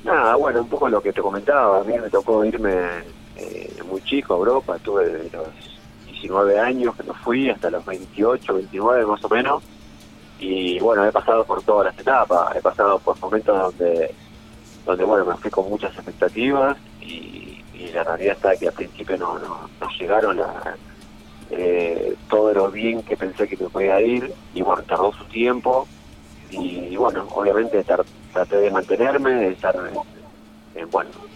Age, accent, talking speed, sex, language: 30-49, Argentinian, 180 wpm, male, Spanish